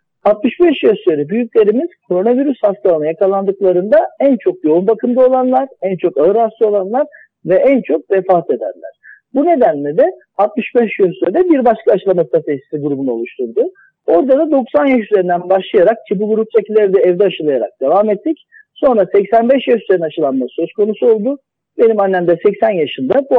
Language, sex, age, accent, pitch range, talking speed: Turkish, male, 50-69, native, 185-285 Hz, 160 wpm